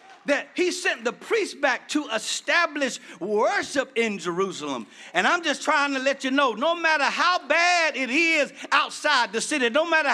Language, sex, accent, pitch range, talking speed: English, male, American, 255-330 Hz, 180 wpm